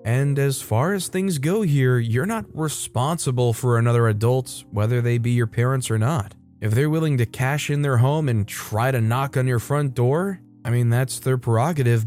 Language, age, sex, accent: English, 20-39, male, American